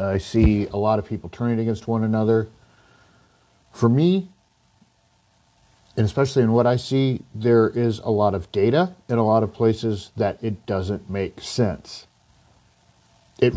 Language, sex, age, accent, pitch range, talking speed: English, male, 40-59, American, 100-120 Hz, 155 wpm